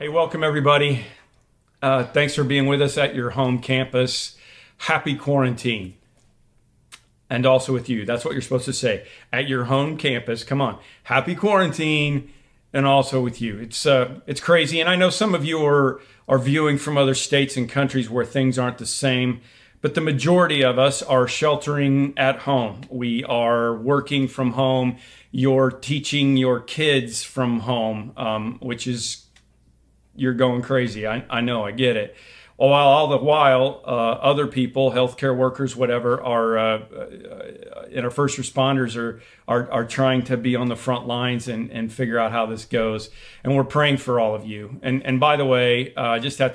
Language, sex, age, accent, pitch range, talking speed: English, male, 40-59, American, 120-140 Hz, 185 wpm